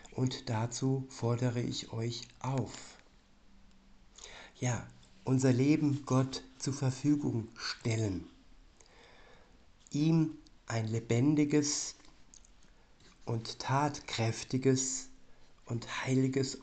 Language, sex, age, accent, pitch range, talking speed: German, male, 60-79, German, 115-130 Hz, 70 wpm